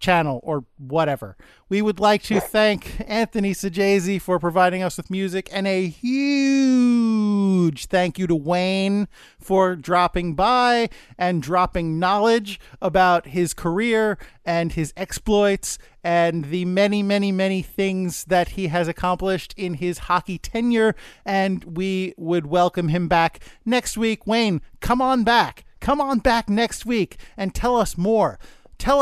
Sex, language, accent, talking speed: male, English, American, 145 wpm